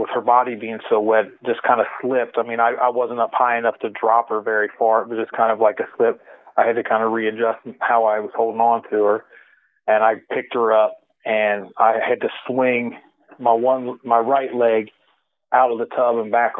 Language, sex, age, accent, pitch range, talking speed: English, male, 40-59, American, 110-120 Hz, 235 wpm